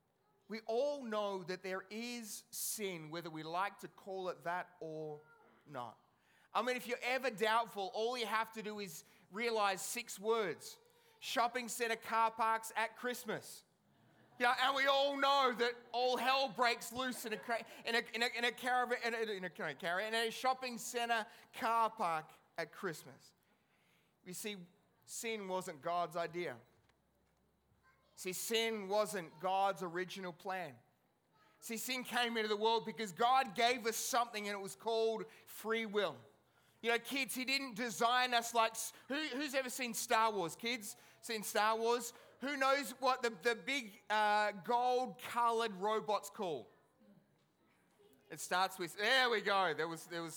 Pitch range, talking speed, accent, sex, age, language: 190-240 Hz, 150 wpm, Australian, male, 30-49, English